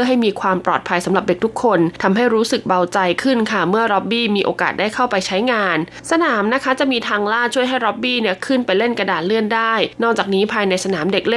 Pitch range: 190-235 Hz